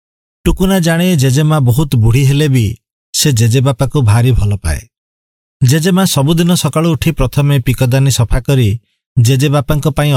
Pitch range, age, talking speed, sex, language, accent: 120-150 Hz, 50-69, 135 wpm, male, English, Indian